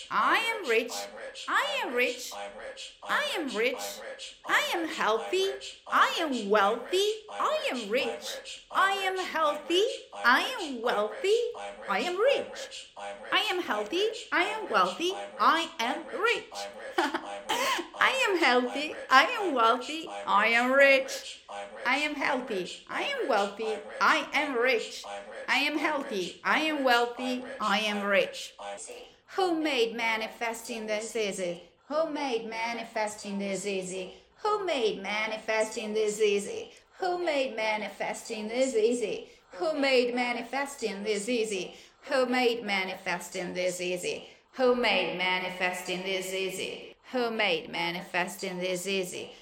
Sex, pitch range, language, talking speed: female, 200-320 Hz, Italian, 150 wpm